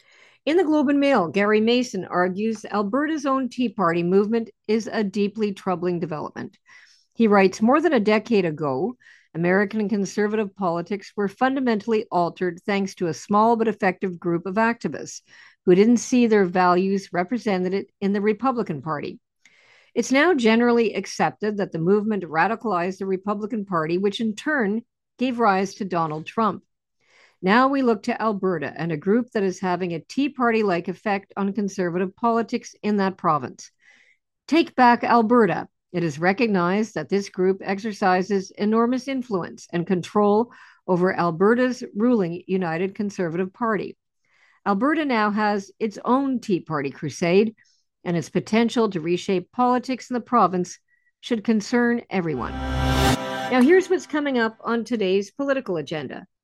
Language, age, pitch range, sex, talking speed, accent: English, 50-69, 185-235 Hz, female, 150 wpm, American